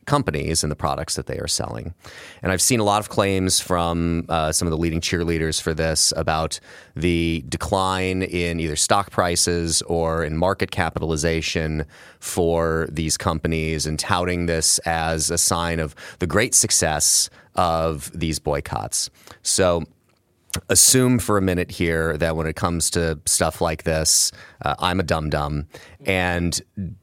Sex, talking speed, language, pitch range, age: male, 155 wpm, English, 80-95 Hz, 30-49